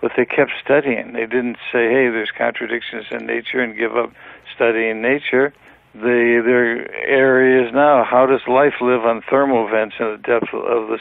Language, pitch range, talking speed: English, 120-135 Hz, 185 wpm